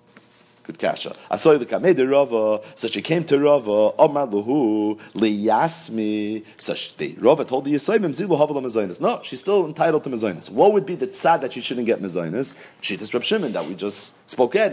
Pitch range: 110-170 Hz